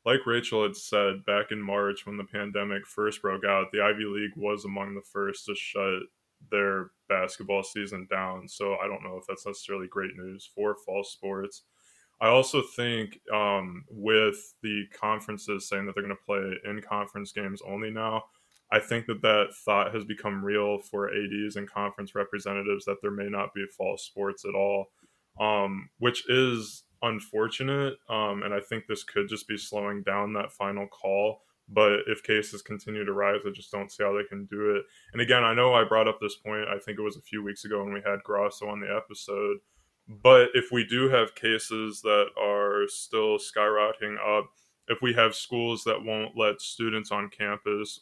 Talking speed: 195 wpm